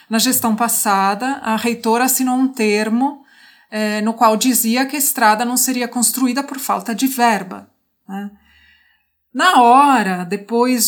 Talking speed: 145 wpm